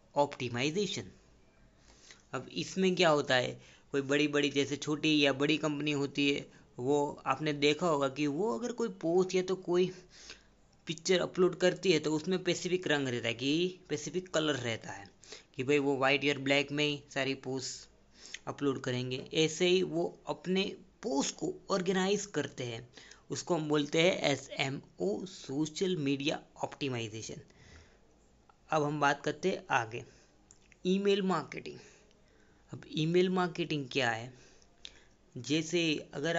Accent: native